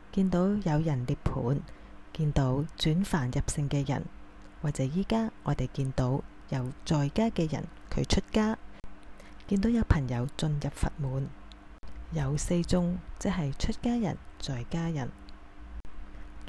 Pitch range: 140-195 Hz